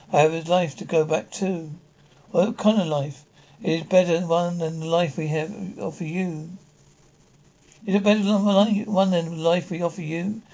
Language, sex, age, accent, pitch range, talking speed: English, male, 60-79, British, 160-185 Hz, 200 wpm